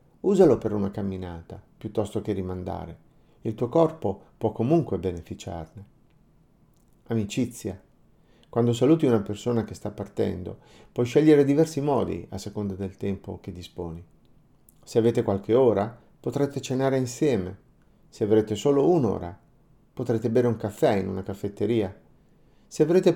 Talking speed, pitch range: 130 wpm, 100-125 Hz